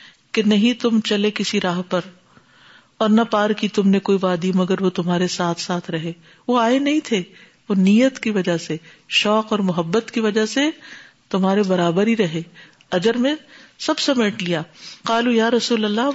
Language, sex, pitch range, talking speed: Urdu, female, 190-275 Hz, 180 wpm